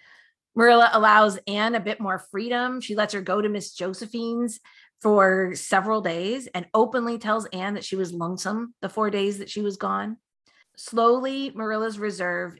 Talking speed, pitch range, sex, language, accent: 165 wpm, 180-220 Hz, female, English, American